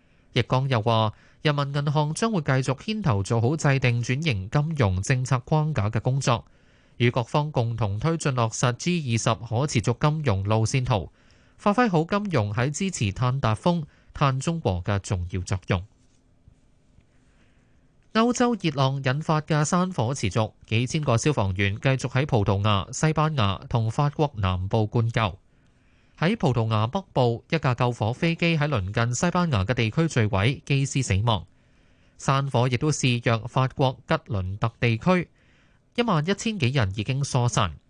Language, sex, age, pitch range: Chinese, male, 20-39, 110-150 Hz